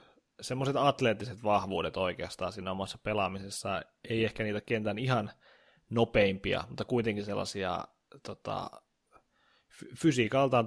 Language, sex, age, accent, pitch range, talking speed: Finnish, male, 20-39, native, 105-120 Hz, 100 wpm